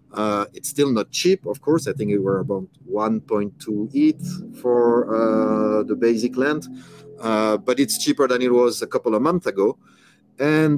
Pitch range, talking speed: 105-130 Hz, 180 wpm